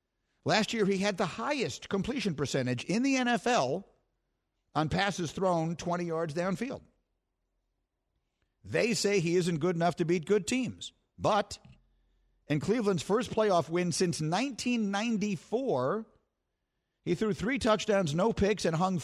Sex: male